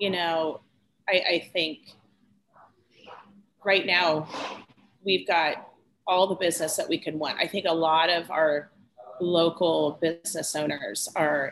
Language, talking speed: English, 135 wpm